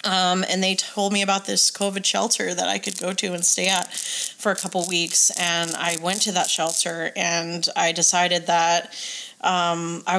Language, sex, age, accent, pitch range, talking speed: English, female, 20-39, American, 175-205 Hz, 195 wpm